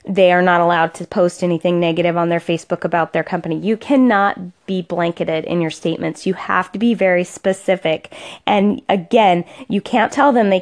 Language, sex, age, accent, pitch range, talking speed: English, female, 20-39, American, 175-235 Hz, 190 wpm